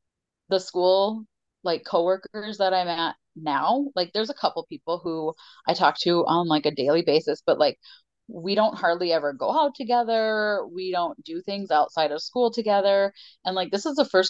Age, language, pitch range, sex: 30-49, English, 170-210 Hz, female